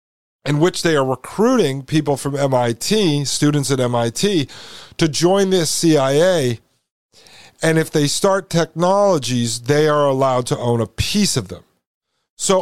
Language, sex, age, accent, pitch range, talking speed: English, male, 50-69, American, 130-175 Hz, 145 wpm